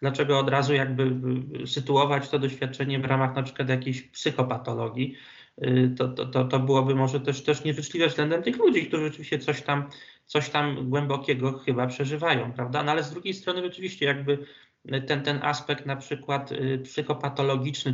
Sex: male